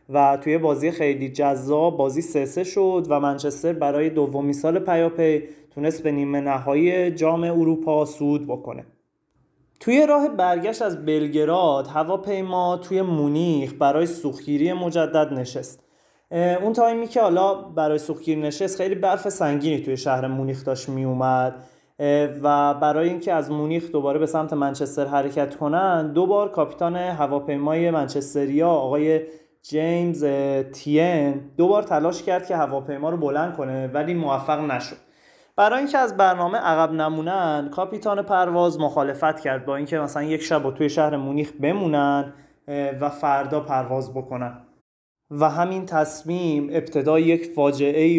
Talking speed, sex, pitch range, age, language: 135 wpm, male, 145-170 Hz, 30-49, Persian